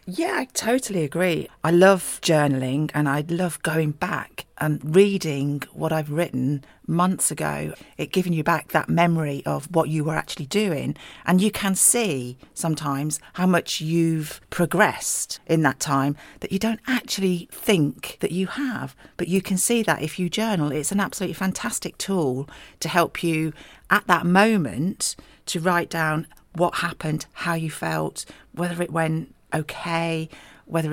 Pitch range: 150-190 Hz